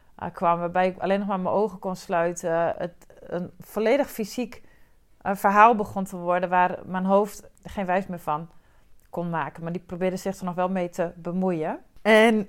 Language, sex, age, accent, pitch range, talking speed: Dutch, female, 40-59, Dutch, 185-225 Hz, 185 wpm